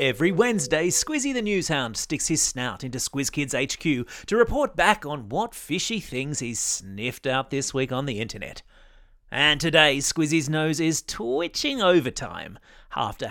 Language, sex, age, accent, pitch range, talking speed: English, male, 30-49, Australian, 125-190 Hz, 155 wpm